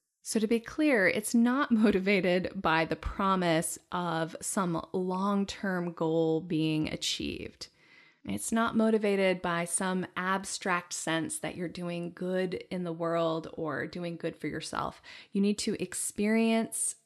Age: 20-39